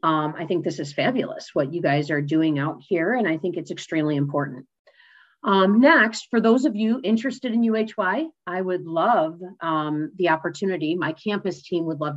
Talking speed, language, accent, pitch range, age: 190 wpm, English, American, 165-215 Hz, 40-59